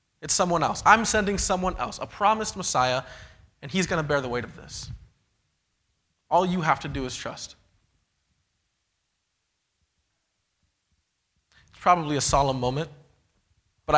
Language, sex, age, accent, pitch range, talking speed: English, male, 20-39, American, 135-195 Hz, 135 wpm